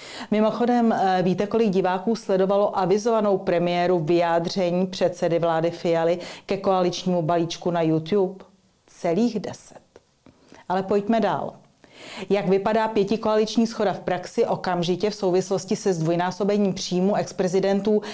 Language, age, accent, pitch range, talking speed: Czech, 40-59, native, 175-210 Hz, 110 wpm